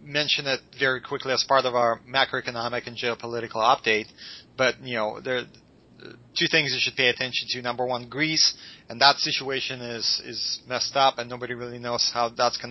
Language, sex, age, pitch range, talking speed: English, male, 30-49, 115-130 Hz, 195 wpm